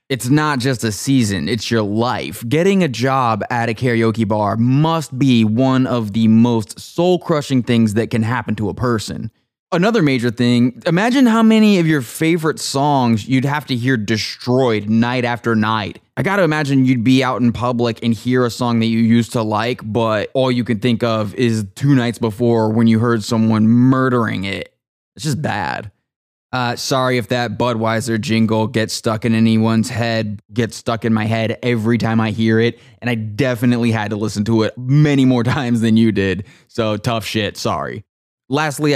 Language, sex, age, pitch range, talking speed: English, male, 20-39, 110-125 Hz, 190 wpm